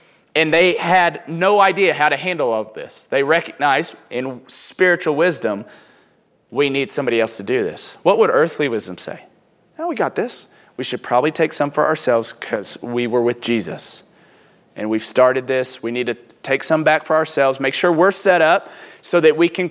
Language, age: English, 30-49